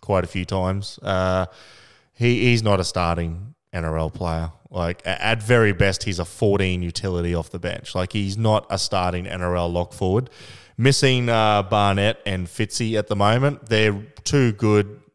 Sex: male